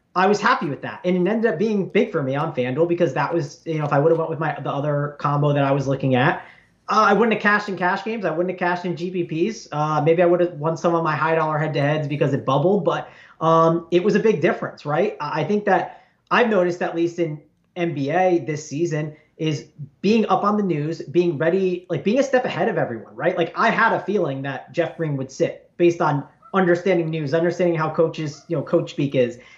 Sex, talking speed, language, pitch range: male, 250 wpm, English, 155-190 Hz